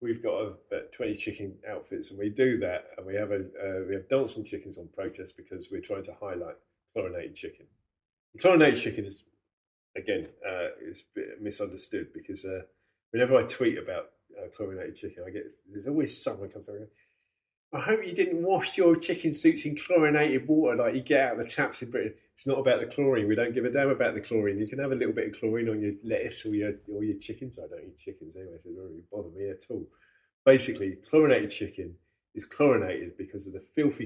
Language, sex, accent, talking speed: English, male, British, 225 wpm